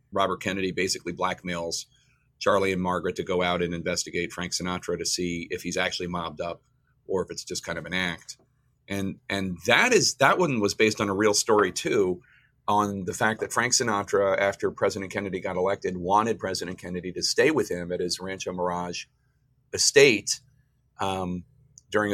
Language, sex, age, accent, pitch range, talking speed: English, male, 40-59, American, 90-125 Hz, 180 wpm